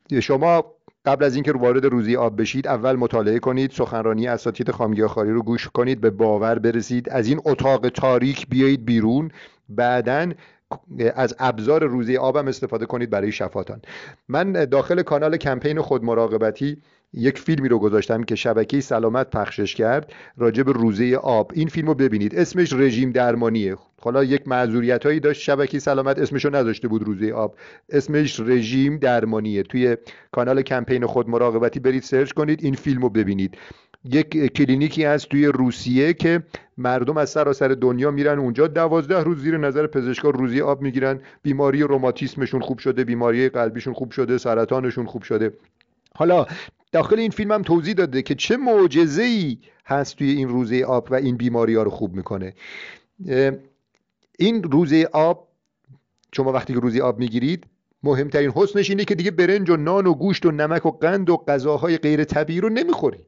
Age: 50-69